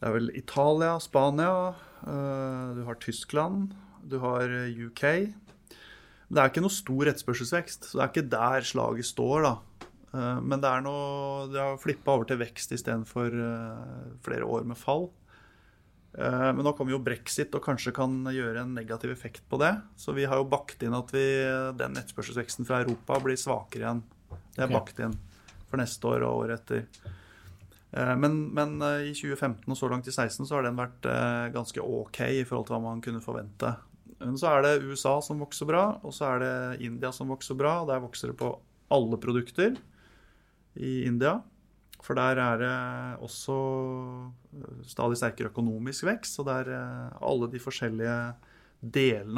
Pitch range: 115-140 Hz